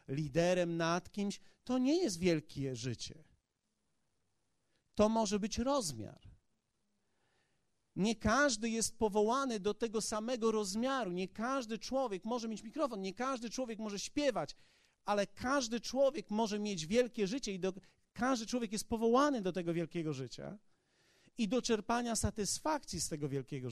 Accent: native